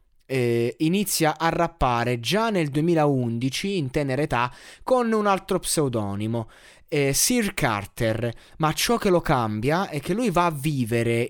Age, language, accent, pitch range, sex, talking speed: 20-39, Italian, native, 115-160 Hz, male, 140 wpm